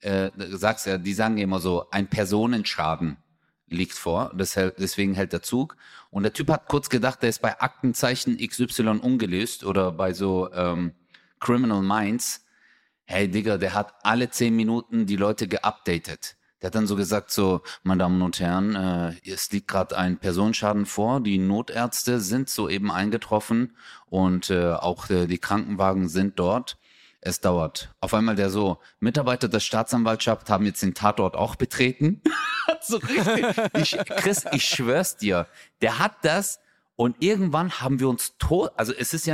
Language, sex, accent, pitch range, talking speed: German, male, German, 95-130 Hz, 165 wpm